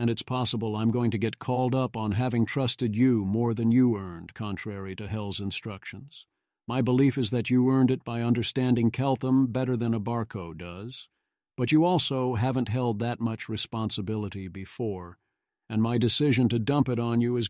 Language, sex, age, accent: English, male, 50-69, American